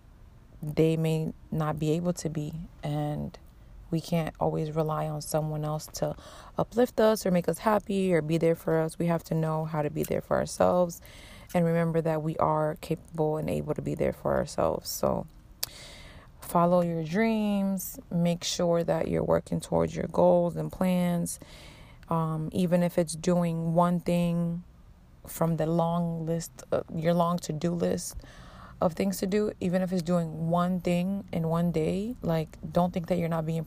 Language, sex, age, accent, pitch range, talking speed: English, female, 30-49, American, 155-180 Hz, 180 wpm